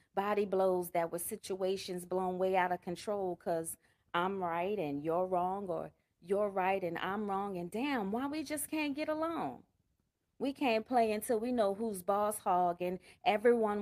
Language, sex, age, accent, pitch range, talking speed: English, female, 30-49, American, 180-210 Hz, 180 wpm